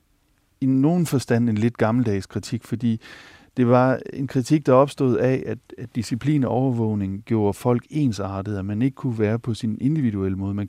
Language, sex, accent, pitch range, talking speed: Danish, male, native, 100-125 Hz, 185 wpm